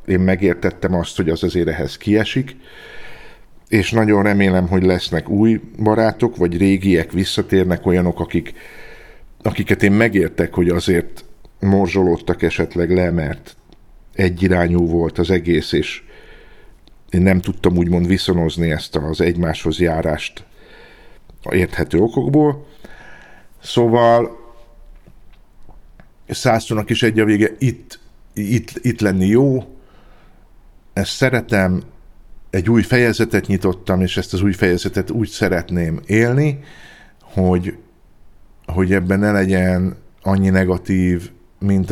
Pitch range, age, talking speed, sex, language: 85-105 Hz, 50-69, 115 wpm, male, Hungarian